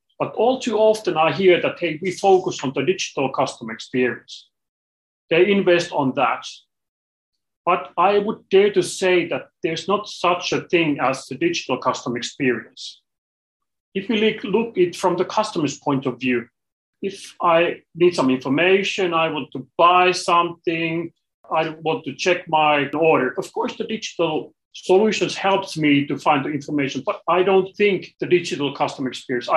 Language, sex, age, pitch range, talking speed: English, male, 40-59, 135-180 Hz, 165 wpm